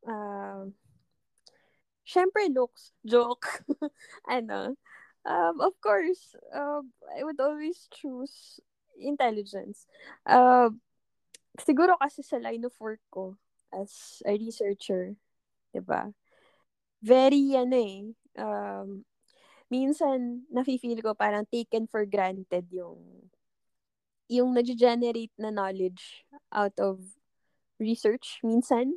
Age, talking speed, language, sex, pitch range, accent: 20-39, 100 wpm, Filipino, female, 215-280 Hz, native